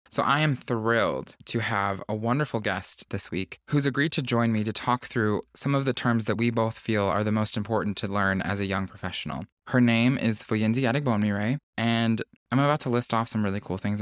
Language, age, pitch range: English, 20-39, 100-125 Hz